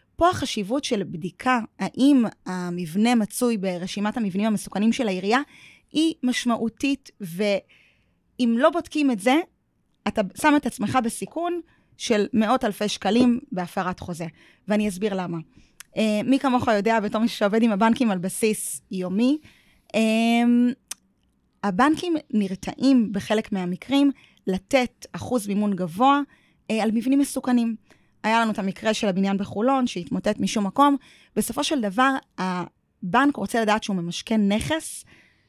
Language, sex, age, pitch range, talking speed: Hebrew, female, 20-39, 205-265 Hz, 125 wpm